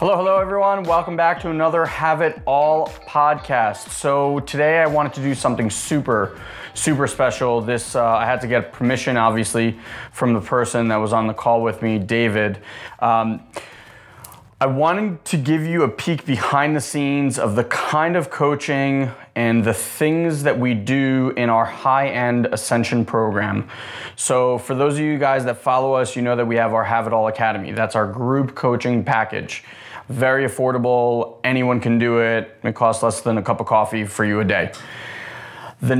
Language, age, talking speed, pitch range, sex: English, 20-39, 185 wpm, 115-140 Hz, male